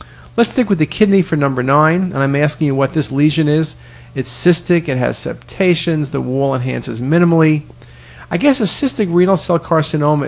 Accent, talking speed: American, 185 wpm